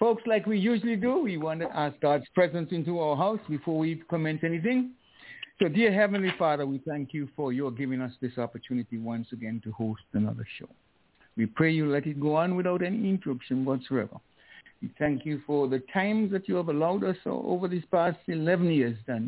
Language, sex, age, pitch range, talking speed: English, male, 60-79, 130-180 Hz, 200 wpm